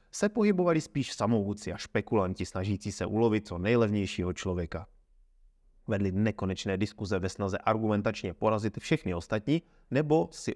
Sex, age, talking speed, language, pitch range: male, 30-49, 130 wpm, Czech, 90-120 Hz